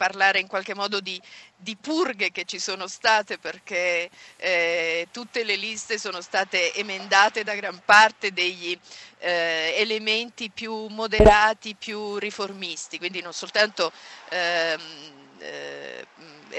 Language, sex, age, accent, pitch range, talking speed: Italian, female, 50-69, native, 185-220 Hz, 120 wpm